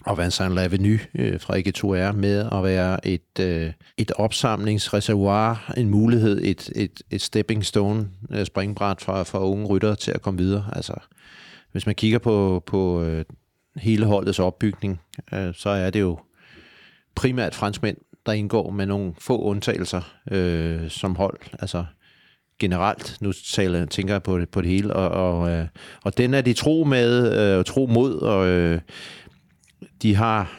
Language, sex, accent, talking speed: Danish, male, native, 145 wpm